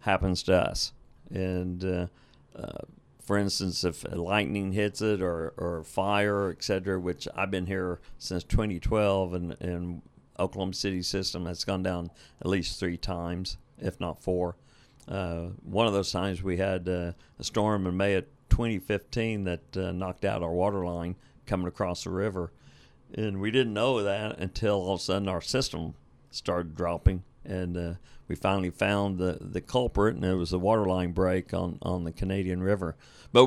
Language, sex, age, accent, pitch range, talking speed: English, male, 50-69, American, 90-100 Hz, 175 wpm